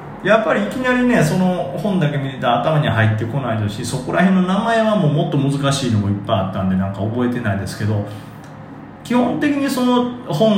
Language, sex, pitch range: Japanese, male, 110-170 Hz